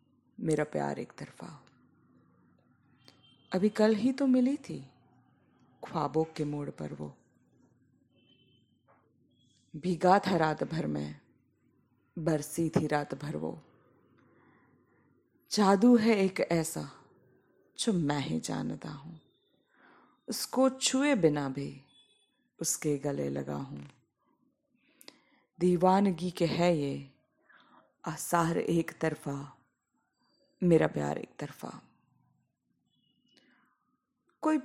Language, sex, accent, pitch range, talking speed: Hindi, female, native, 140-200 Hz, 90 wpm